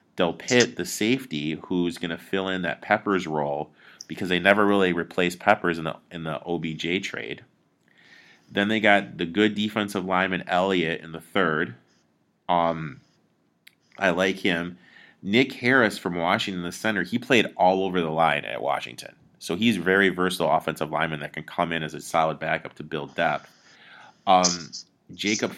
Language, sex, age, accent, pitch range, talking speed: English, male, 30-49, American, 80-95 Hz, 165 wpm